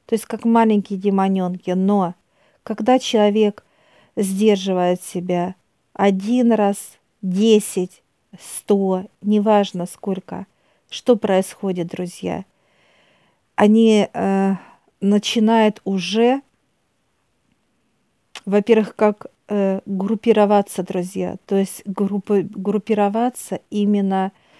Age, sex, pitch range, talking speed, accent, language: 50-69, female, 190-215 Hz, 85 wpm, native, Russian